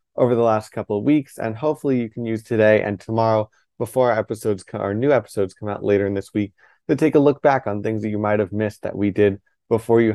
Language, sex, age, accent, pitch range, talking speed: English, male, 20-39, American, 100-115 Hz, 250 wpm